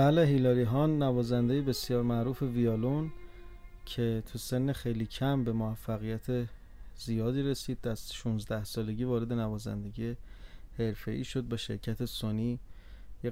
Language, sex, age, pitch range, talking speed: Persian, male, 30-49, 110-135 Hz, 120 wpm